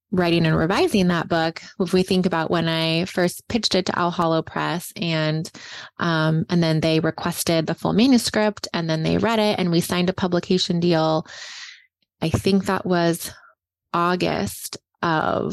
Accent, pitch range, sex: American, 165-195 Hz, female